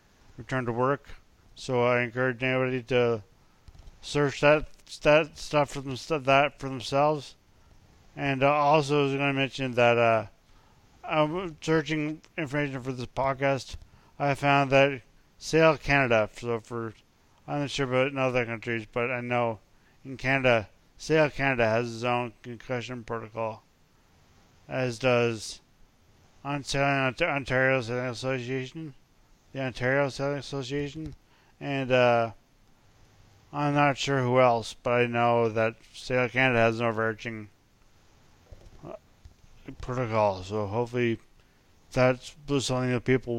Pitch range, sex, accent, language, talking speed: 115-135 Hz, male, American, English, 125 wpm